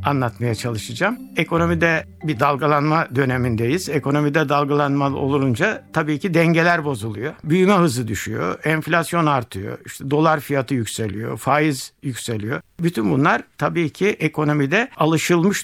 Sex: male